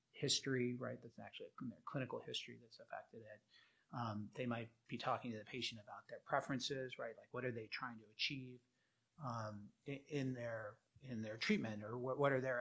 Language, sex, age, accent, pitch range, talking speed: English, male, 30-49, American, 115-140 Hz, 195 wpm